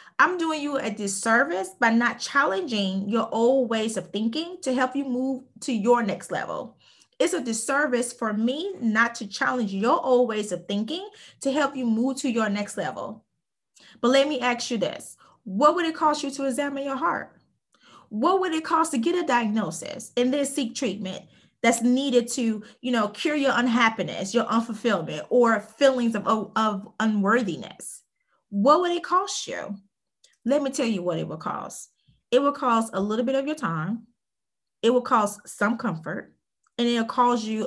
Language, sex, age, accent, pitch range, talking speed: English, female, 20-39, American, 205-265 Hz, 185 wpm